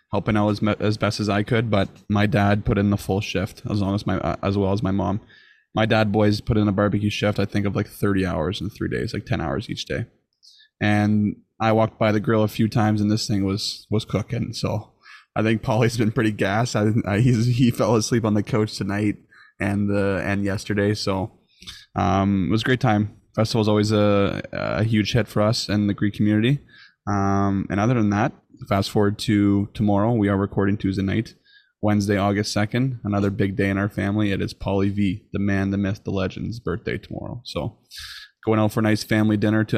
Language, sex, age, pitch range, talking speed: English, male, 20-39, 100-110 Hz, 225 wpm